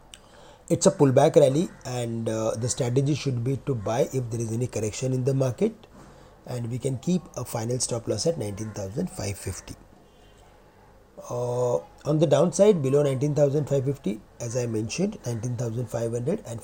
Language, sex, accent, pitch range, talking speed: English, male, Indian, 115-150 Hz, 150 wpm